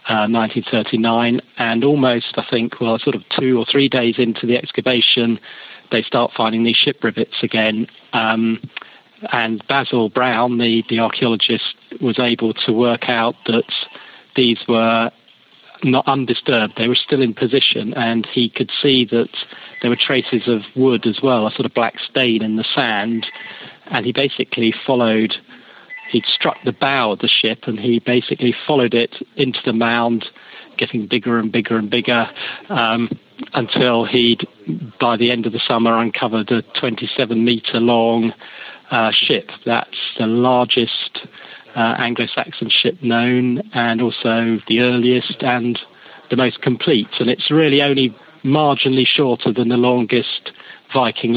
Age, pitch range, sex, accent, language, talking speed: 40-59, 115-125 Hz, male, British, English, 155 wpm